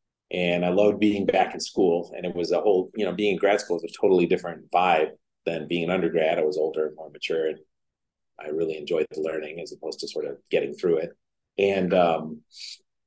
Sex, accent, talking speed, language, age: male, American, 225 wpm, English, 40-59